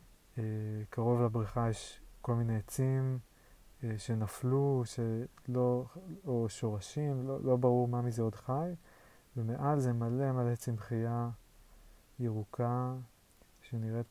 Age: 30-49